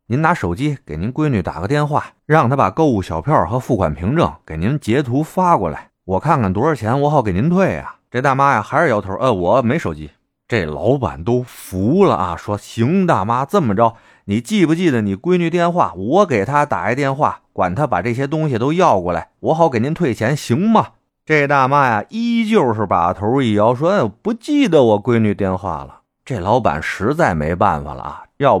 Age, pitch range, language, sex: 30-49, 100-165 Hz, Chinese, male